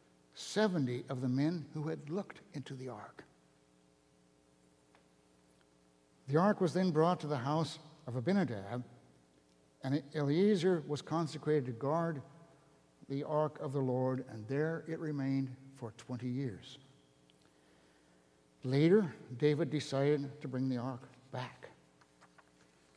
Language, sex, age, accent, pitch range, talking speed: English, male, 60-79, American, 100-165 Hz, 120 wpm